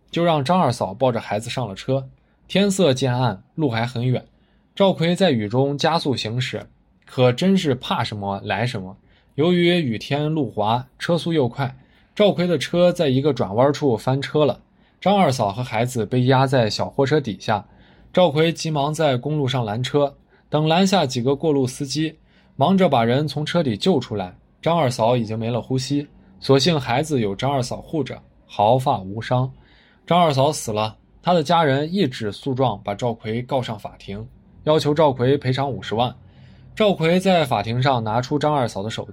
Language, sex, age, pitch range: Chinese, male, 20-39, 115-160 Hz